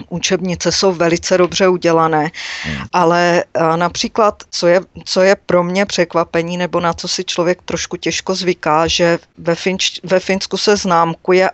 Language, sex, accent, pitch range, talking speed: Czech, female, native, 170-190 Hz, 150 wpm